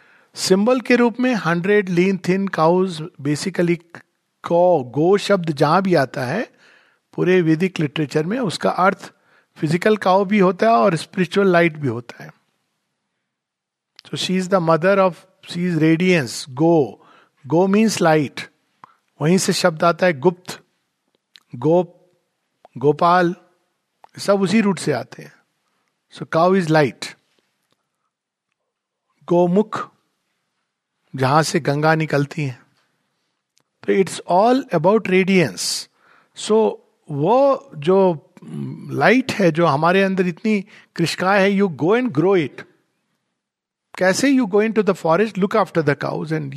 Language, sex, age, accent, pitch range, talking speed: Hindi, male, 50-69, native, 160-200 Hz, 130 wpm